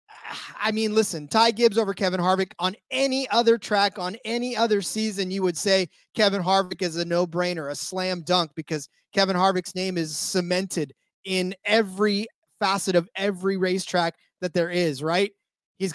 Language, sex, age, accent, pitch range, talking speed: English, male, 30-49, American, 165-200 Hz, 165 wpm